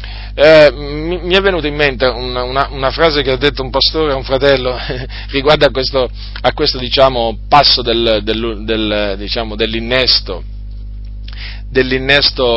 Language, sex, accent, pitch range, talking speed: Italian, male, native, 105-140 Hz, 150 wpm